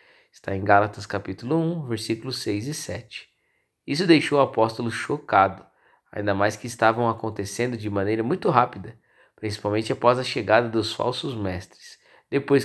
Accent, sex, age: Brazilian, male, 20-39